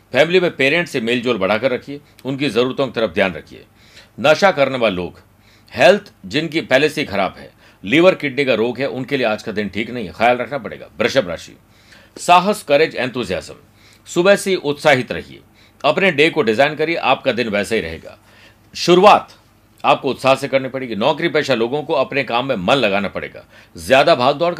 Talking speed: 185 wpm